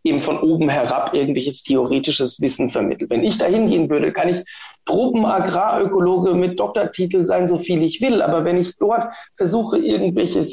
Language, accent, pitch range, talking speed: German, German, 165-205 Hz, 165 wpm